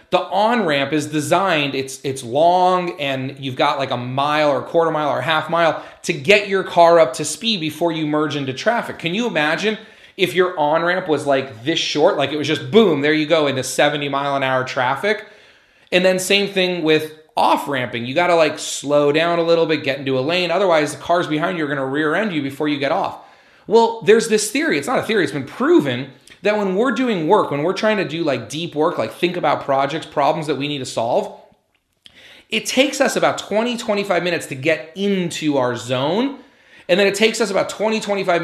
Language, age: English, 30-49